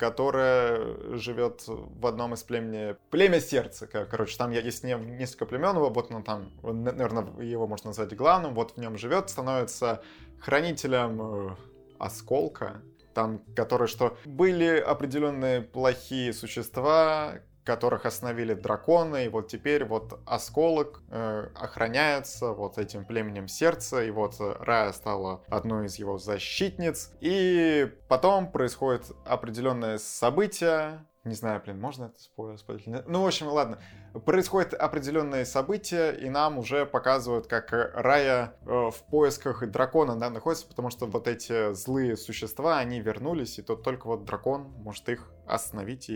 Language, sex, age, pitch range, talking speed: Russian, male, 20-39, 110-140 Hz, 135 wpm